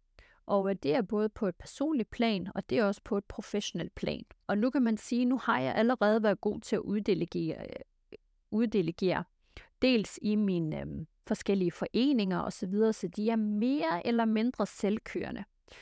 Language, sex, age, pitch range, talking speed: Danish, female, 30-49, 185-230 Hz, 180 wpm